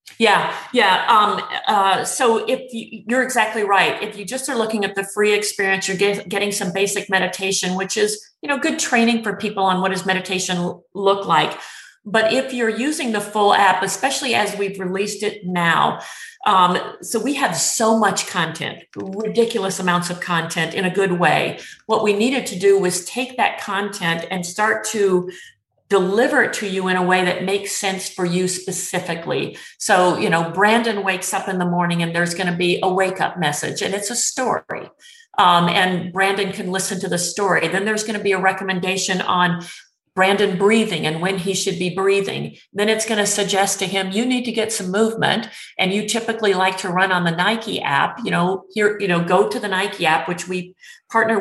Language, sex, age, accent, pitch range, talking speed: English, female, 40-59, American, 185-210 Hz, 200 wpm